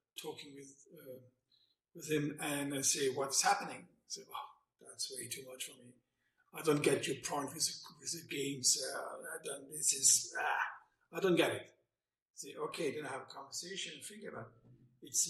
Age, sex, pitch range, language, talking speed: 50-69, male, 140-210 Hz, English, 190 wpm